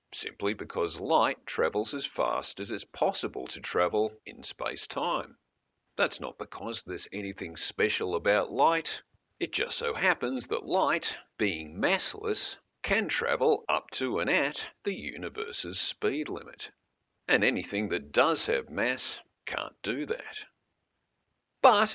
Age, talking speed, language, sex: 50-69, 135 wpm, English, male